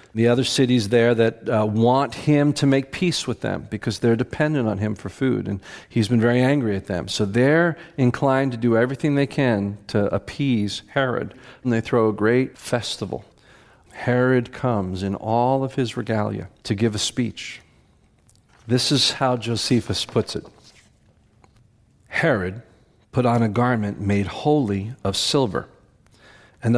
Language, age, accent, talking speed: English, 50-69, American, 160 wpm